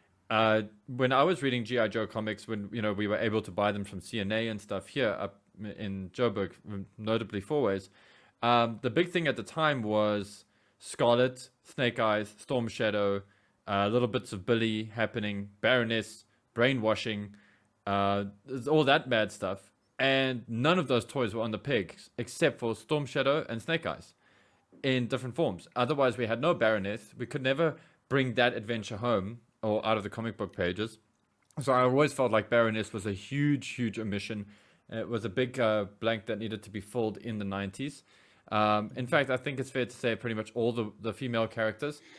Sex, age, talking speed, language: male, 20-39, 190 wpm, English